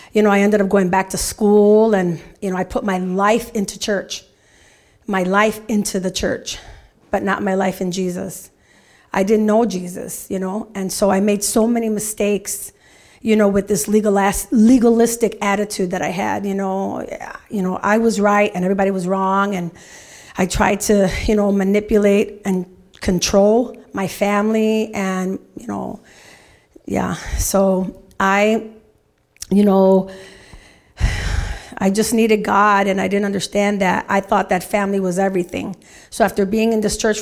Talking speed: 165 wpm